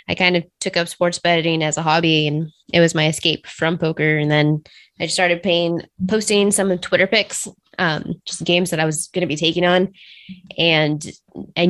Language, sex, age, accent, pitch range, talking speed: English, female, 20-39, American, 160-180 Hz, 205 wpm